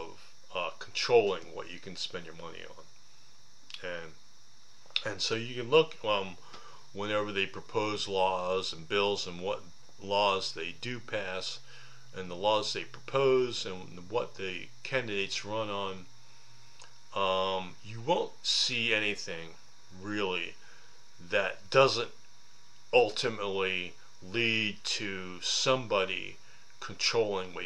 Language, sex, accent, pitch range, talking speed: English, male, American, 90-110 Hz, 115 wpm